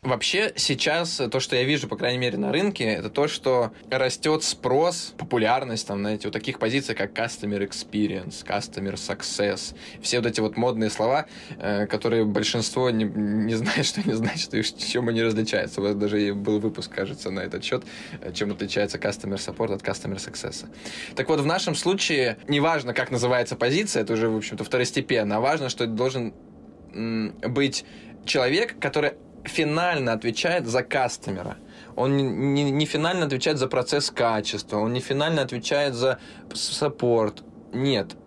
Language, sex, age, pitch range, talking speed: Russian, male, 20-39, 110-140 Hz, 165 wpm